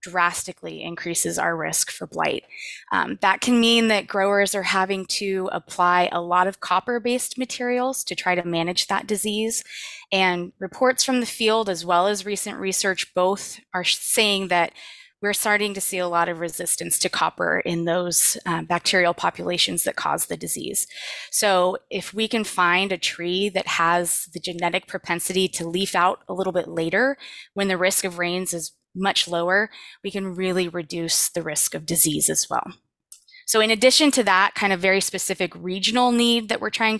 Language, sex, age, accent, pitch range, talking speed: English, female, 20-39, American, 180-210 Hz, 180 wpm